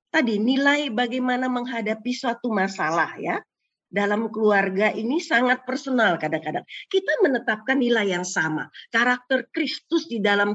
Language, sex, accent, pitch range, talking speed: Indonesian, female, native, 205-270 Hz, 125 wpm